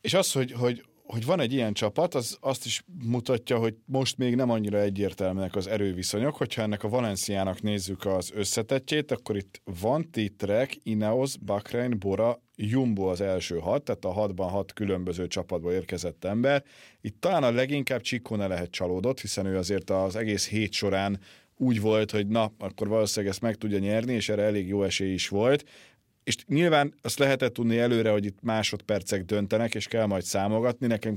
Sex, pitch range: male, 100-115 Hz